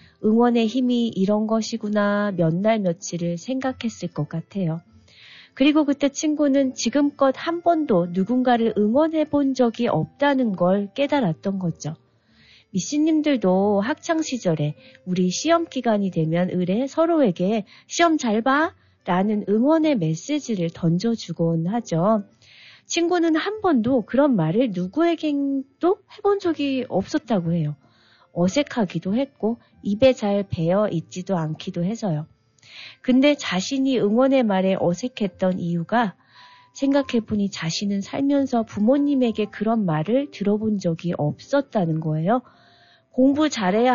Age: 40-59